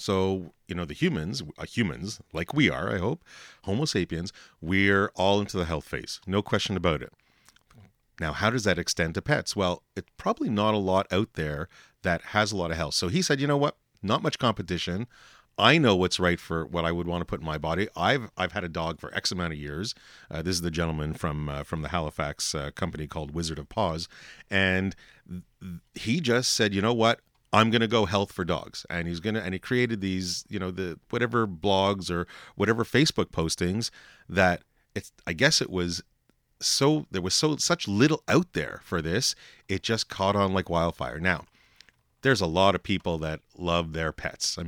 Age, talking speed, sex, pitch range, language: 40-59, 210 wpm, male, 85-105 Hz, English